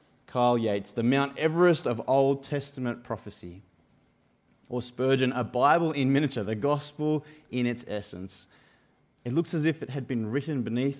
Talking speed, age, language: 160 wpm, 30-49, English